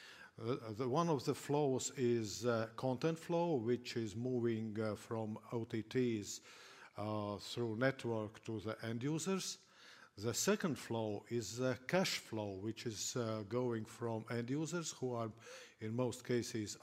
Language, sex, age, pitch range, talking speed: English, male, 50-69, 110-135 Hz, 140 wpm